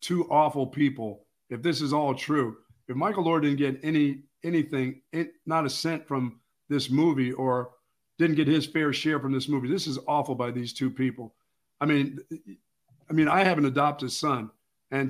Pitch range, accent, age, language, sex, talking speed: 130-155 Hz, American, 50-69, English, male, 190 wpm